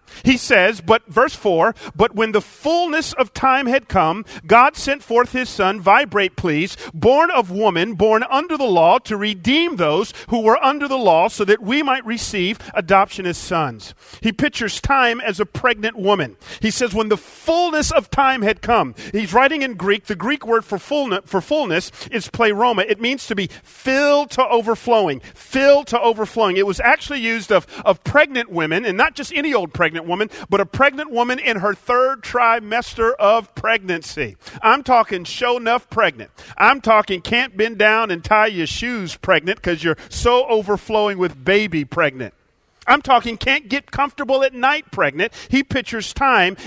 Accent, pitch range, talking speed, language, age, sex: American, 205-270 Hz, 180 wpm, English, 40-59, male